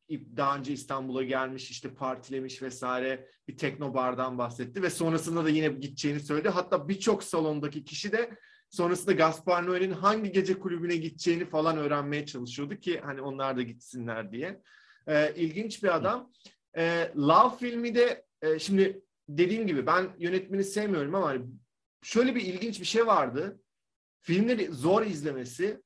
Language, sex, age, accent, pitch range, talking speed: Turkish, male, 30-49, native, 140-200 Hz, 145 wpm